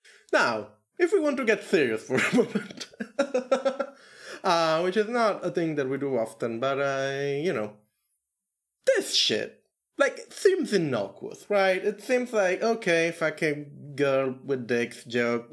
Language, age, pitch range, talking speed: English, 20-39, 130-210 Hz, 160 wpm